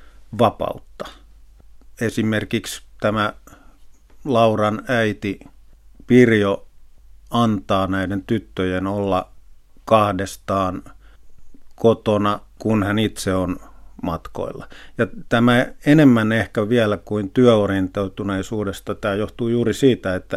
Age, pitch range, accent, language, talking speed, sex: 50-69, 95-120 Hz, native, Finnish, 85 wpm, male